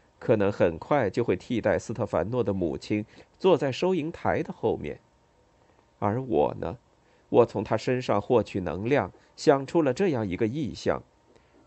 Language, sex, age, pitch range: Chinese, male, 50-69, 105-155 Hz